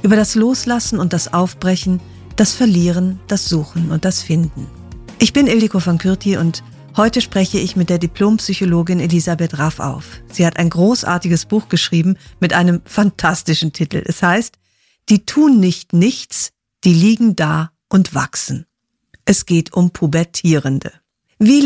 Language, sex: German, female